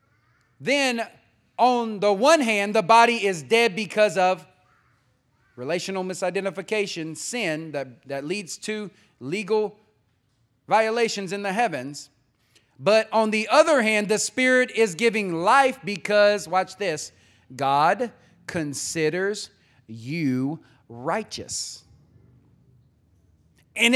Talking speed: 105 wpm